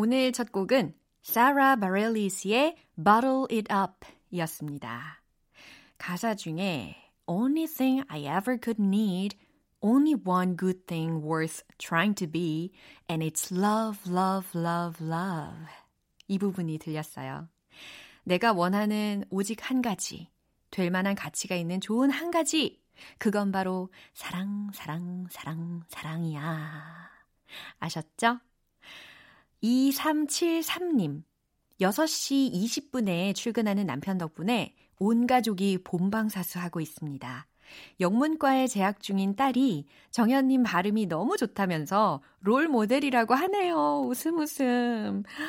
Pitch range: 175-250 Hz